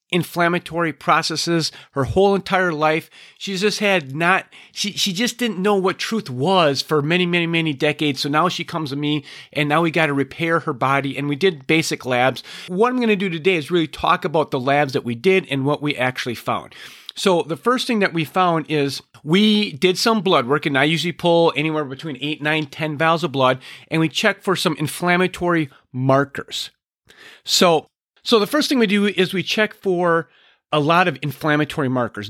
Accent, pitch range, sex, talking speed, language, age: American, 145-185 Hz, male, 205 wpm, English, 40-59